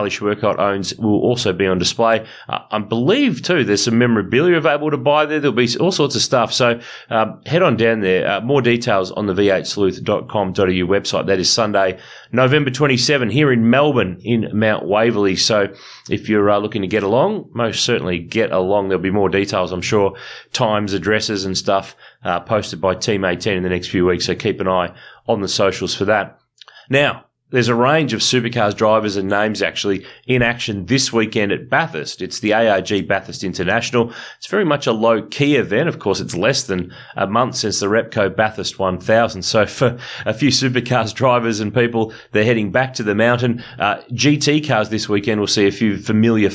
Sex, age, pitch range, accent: male, 30-49, 100-120 Hz, Australian